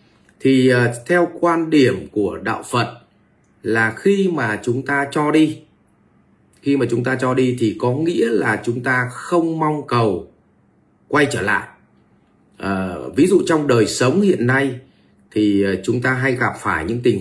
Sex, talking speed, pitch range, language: male, 165 wpm, 110-155 Hz, Vietnamese